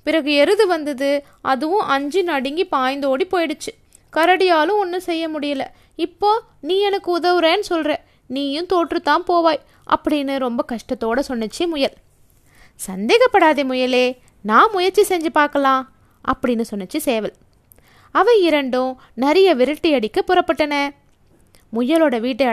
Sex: female